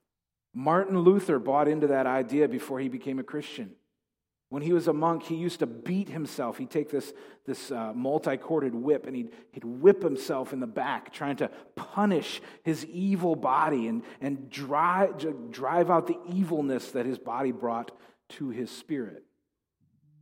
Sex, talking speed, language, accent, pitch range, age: male, 165 wpm, English, American, 130-185 Hz, 40-59